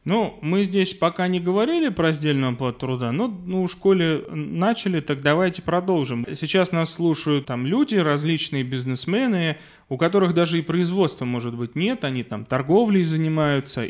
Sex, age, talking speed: male, 20-39, 160 wpm